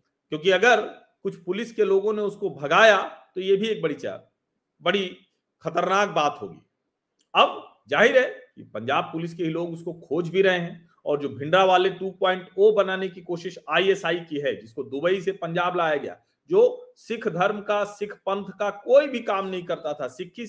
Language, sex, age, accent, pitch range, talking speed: Hindi, male, 40-59, native, 160-200 Hz, 185 wpm